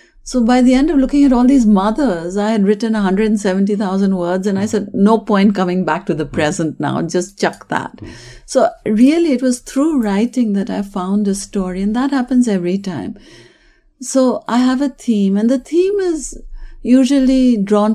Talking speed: 185 wpm